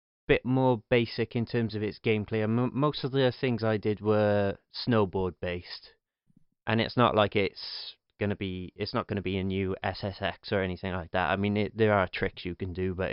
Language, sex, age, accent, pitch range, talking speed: English, male, 30-49, British, 95-110 Hz, 215 wpm